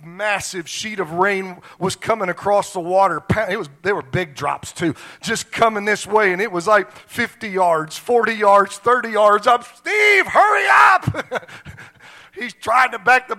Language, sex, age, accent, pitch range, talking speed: English, male, 40-59, American, 170-225 Hz, 175 wpm